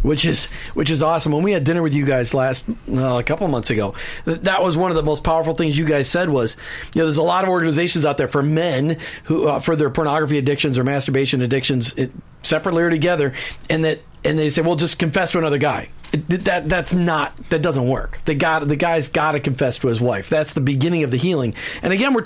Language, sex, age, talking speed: English, male, 40-59, 245 wpm